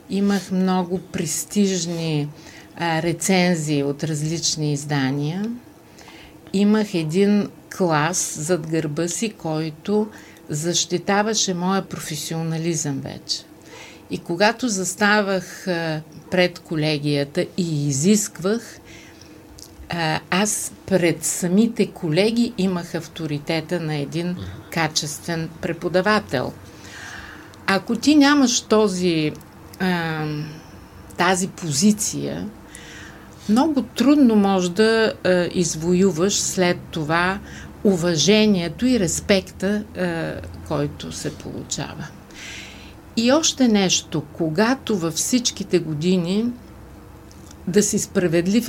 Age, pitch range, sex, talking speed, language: 50-69, 160-200 Hz, female, 85 wpm, Bulgarian